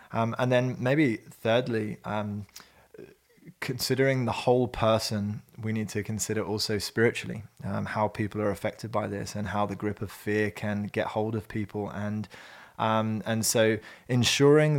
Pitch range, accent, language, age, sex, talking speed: 105-115 Hz, British, English, 20-39, male, 160 wpm